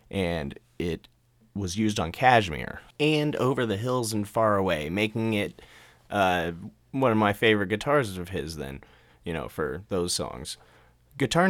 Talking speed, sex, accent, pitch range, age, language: 155 wpm, male, American, 90-115 Hz, 30-49, English